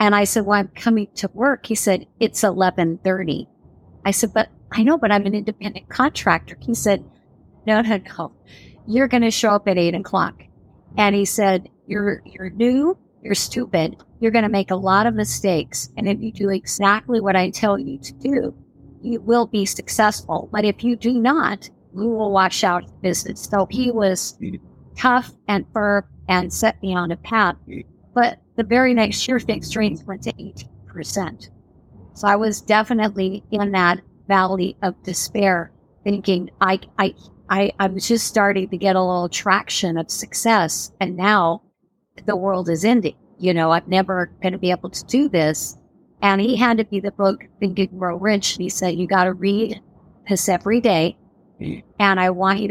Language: English